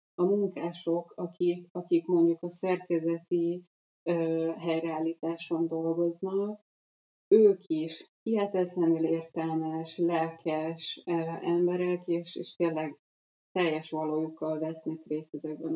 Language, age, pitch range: Hungarian, 30-49, 160-180 Hz